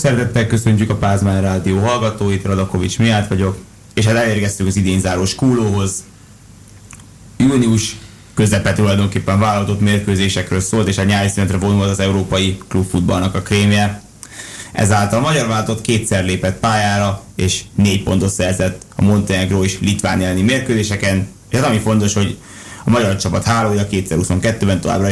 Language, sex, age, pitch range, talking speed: Hungarian, male, 20-39, 95-110 Hz, 145 wpm